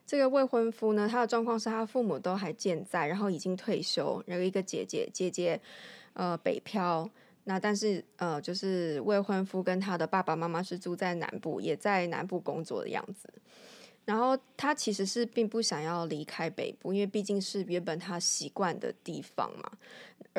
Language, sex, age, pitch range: Chinese, female, 20-39, 180-225 Hz